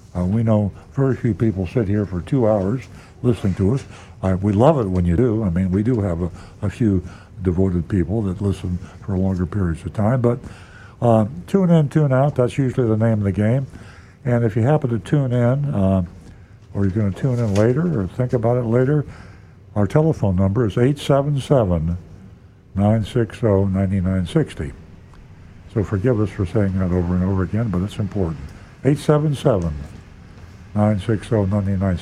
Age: 60-79